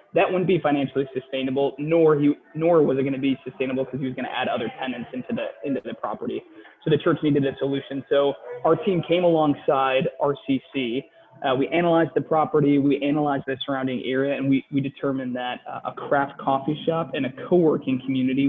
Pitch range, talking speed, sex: 130-155 Hz, 205 wpm, male